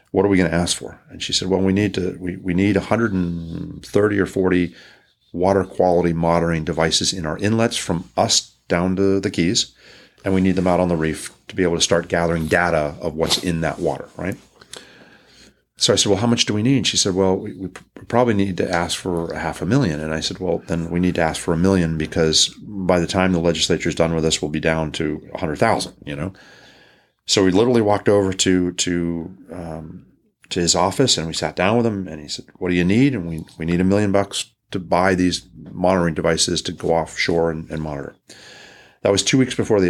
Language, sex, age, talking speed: English, male, 40-59, 230 wpm